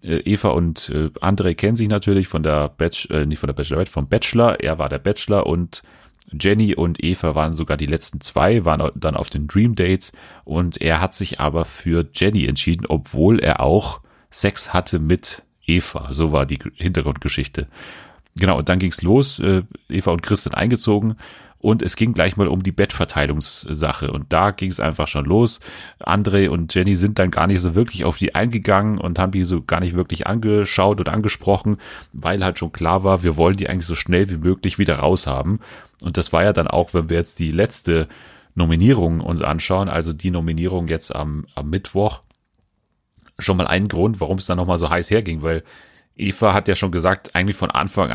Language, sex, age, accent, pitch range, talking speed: German, male, 30-49, German, 80-100 Hz, 200 wpm